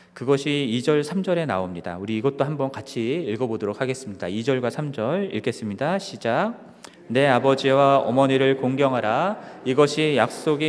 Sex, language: male, Korean